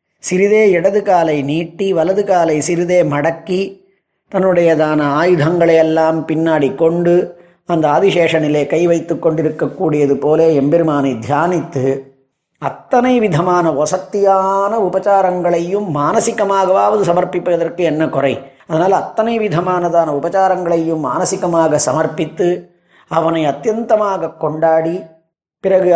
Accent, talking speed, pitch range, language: native, 90 wpm, 150-190 Hz, Tamil